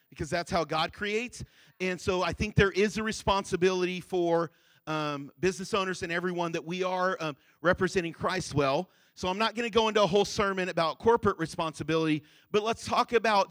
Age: 40-59